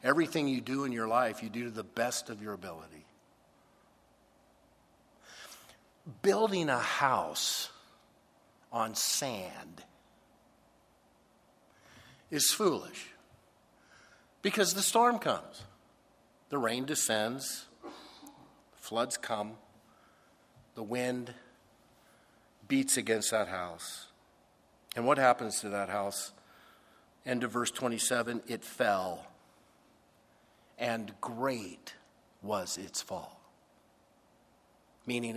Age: 50-69